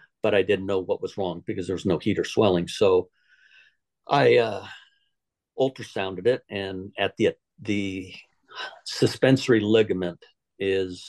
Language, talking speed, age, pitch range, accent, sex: English, 140 wpm, 50-69, 95-130 Hz, American, male